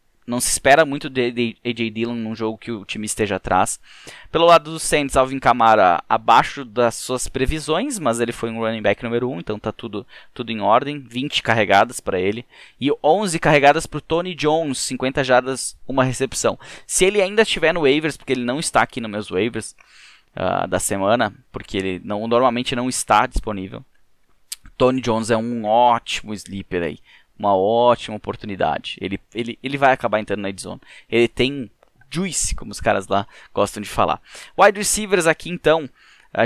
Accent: Brazilian